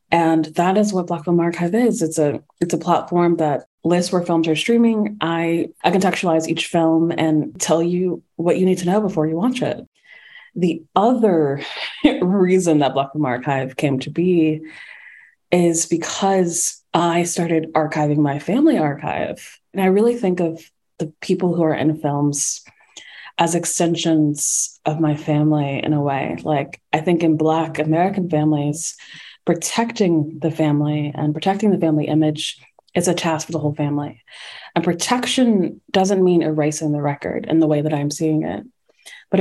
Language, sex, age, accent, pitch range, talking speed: English, female, 20-39, American, 155-180 Hz, 165 wpm